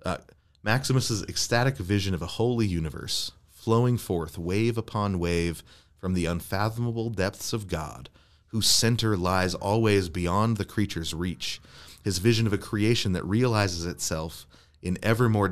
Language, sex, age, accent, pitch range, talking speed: English, male, 30-49, American, 85-105 Hz, 145 wpm